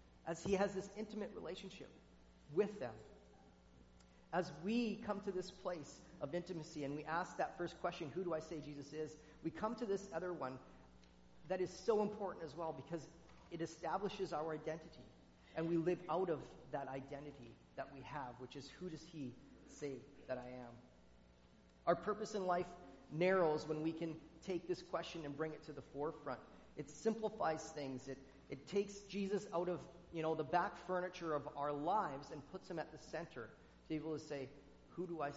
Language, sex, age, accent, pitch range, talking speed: English, male, 40-59, American, 135-170 Hz, 190 wpm